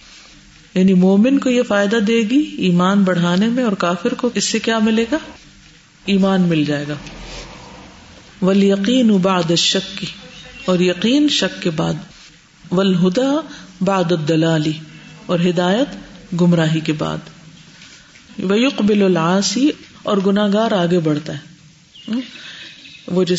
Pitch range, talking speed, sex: 170-215 Hz, 110 wpm, female